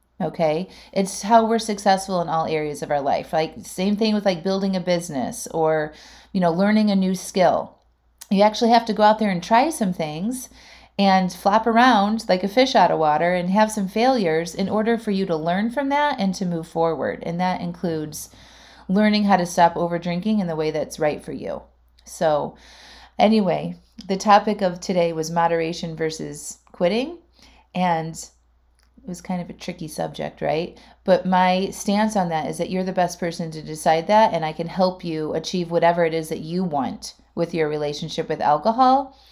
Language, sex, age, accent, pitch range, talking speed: English, female, 30-49, American, 160-210 Hz, 195 wpm